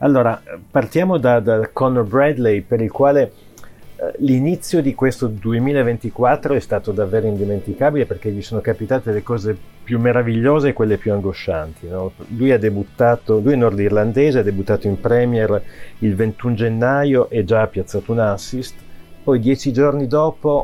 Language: Italian